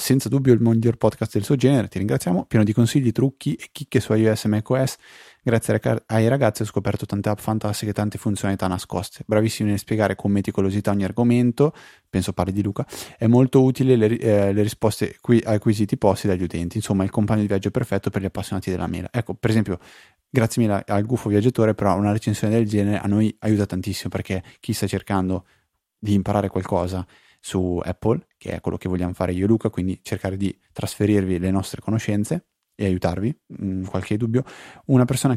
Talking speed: 195 wpm